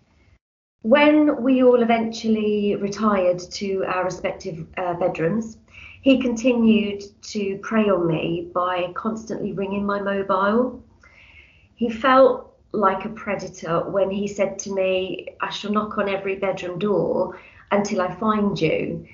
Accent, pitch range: British, 175-215 Hz